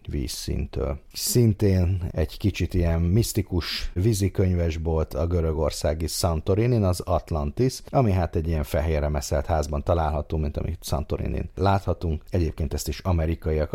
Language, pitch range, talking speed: Hungarian, 75-90 Hz, 125 wpm